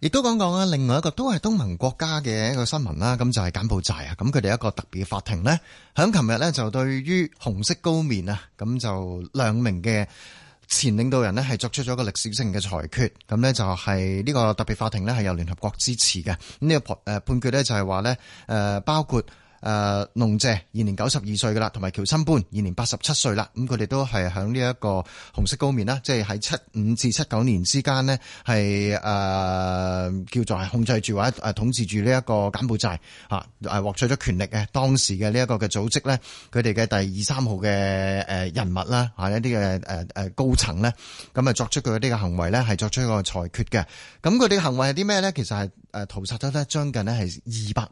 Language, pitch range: Chinese, 100-130 Hz